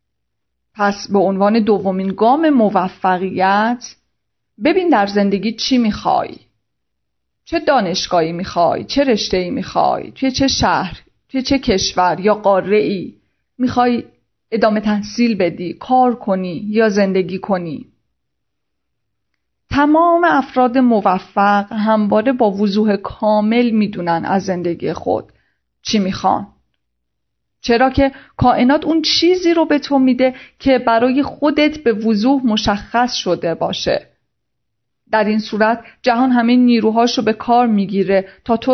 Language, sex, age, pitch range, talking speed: Persian, female, 40-59, 195-255 Hz, 120 wpm